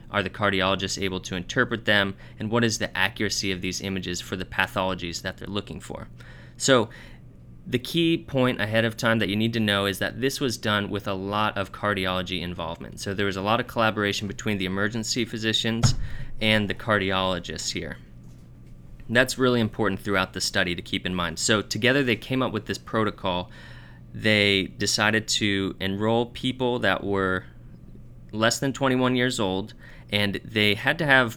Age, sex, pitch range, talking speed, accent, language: 30-49, male, 95-115 Hz, 180 wpm, American, English